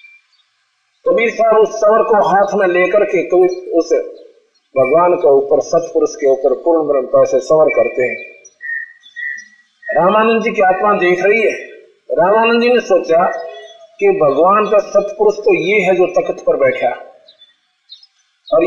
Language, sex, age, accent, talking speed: Hindi, male, 50-69, native, 150 wpm